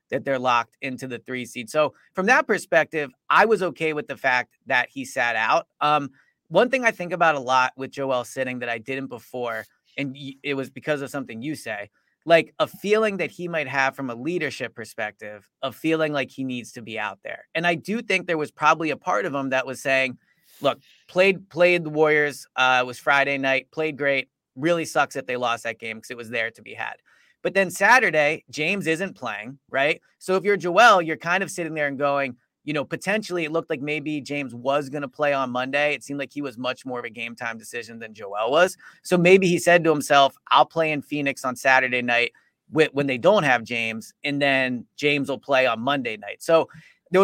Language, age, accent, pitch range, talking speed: English, 30-49, American, 130-160 Hz, 225 wpm